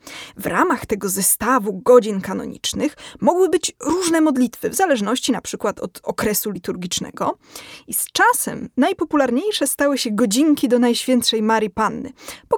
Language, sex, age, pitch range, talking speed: Polish, female, 20-39, 225-295 Hz, 140 wpm